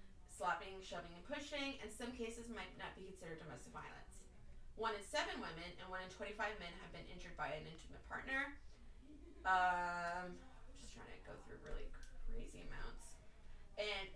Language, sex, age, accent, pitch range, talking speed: English, female, 20-39, American, 175-240 Hz, 170 wpm